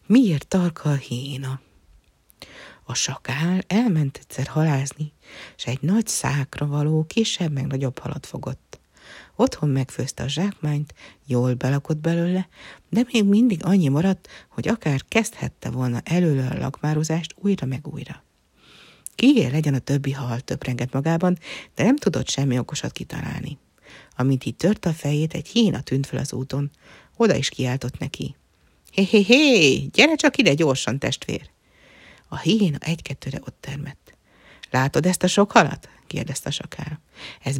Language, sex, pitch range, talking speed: Hungarian, female, 135-190 Hz, 150 wpm